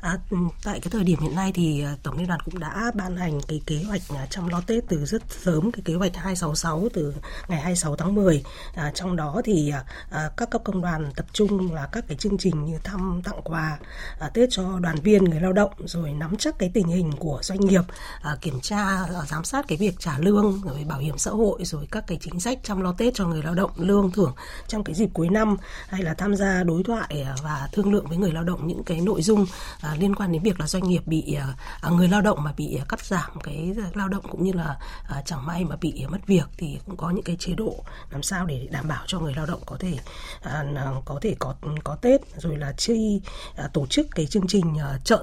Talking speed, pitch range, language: 240 wpm, 155-200 Hz, Vietnamese